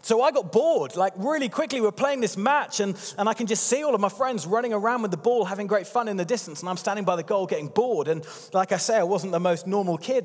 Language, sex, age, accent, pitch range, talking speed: English, male, 30-49, British, 170-225 Hz, 295 wpm